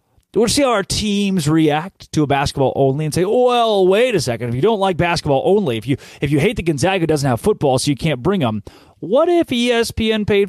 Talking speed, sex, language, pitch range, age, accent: 235 wpm, male, English, 115-190 Hz, 30-49, American